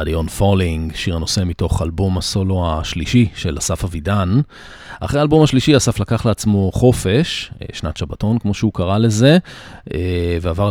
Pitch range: 90-115 Hz